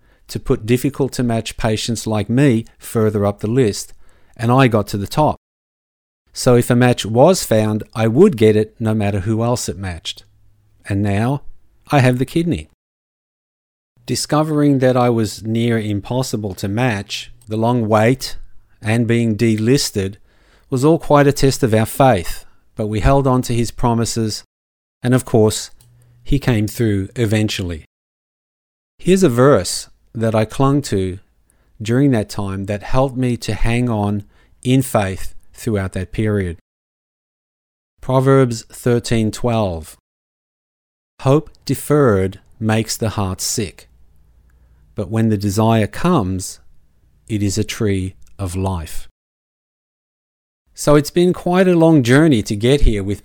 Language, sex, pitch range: English, male, 100-125 Hz